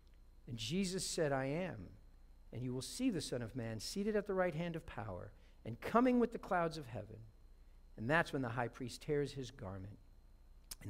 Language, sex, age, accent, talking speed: English, male, 50-69, American, 205 wpm